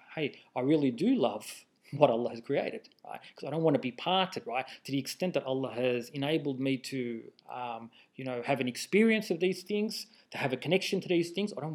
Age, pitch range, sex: 30-49, 145-220 Hz, male